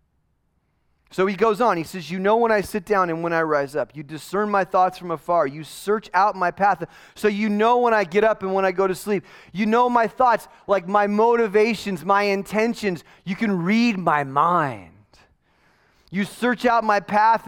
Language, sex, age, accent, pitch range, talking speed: English, male, 30-49, American, 150-210 Hz, 205 wpm